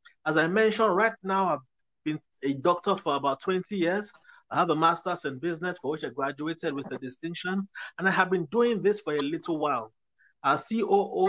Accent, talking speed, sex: Nigerian, 200 wpm, male